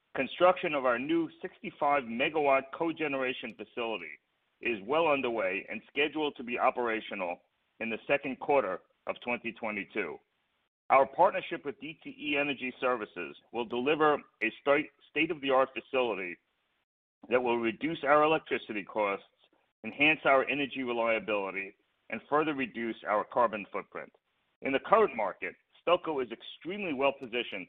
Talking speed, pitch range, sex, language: 125 wpm, 115-150 Hz, male, English